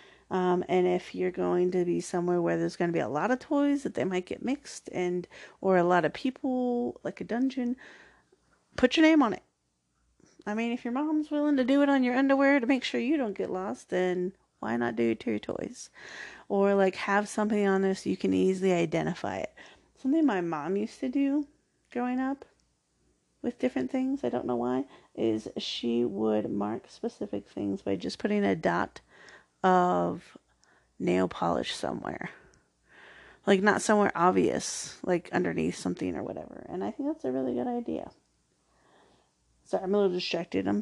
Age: 30-49